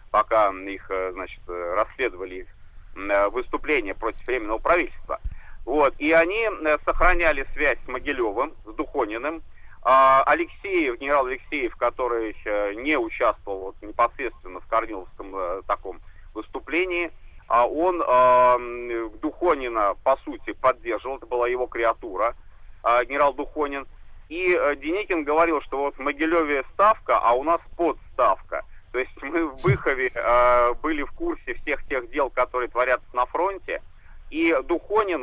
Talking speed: 120 wpm